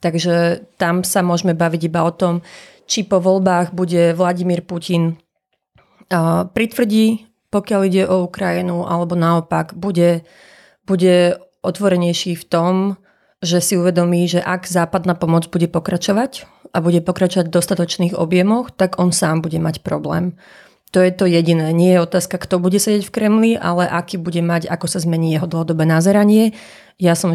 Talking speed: 160 wpm